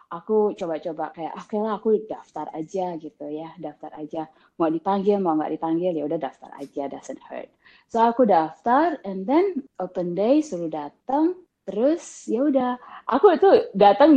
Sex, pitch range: female, 170-250 Hz